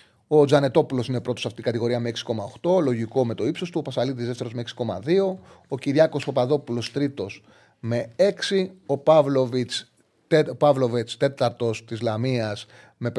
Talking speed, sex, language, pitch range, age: 160 wpm, male, Greek, 115-160 Hz, 30-49